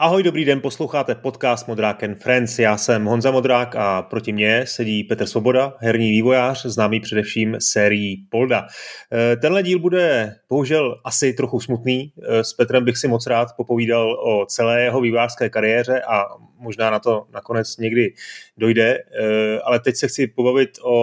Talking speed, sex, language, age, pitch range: 155 wpm, male, Czech, 30-49, 110-130 Hz